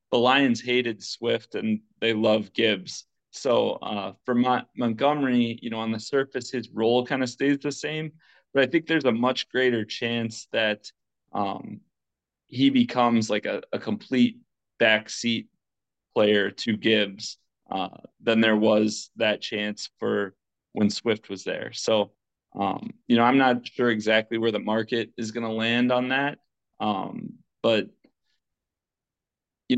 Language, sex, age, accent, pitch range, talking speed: English, male, 20-39, American, 110-125 Hz, 150 wpm